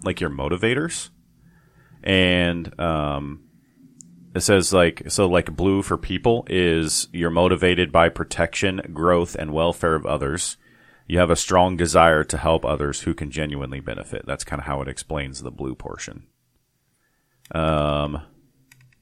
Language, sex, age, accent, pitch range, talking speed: English, male, 30-49, American, 75-100 Hz, 140 wpm